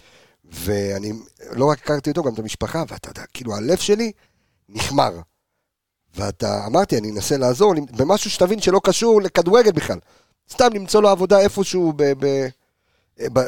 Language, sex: Hebrew, male